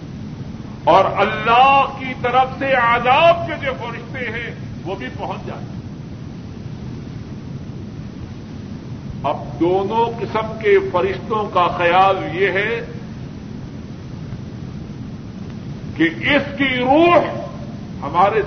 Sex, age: female, 50-69